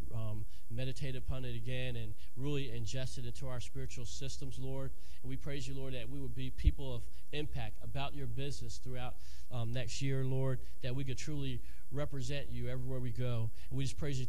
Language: English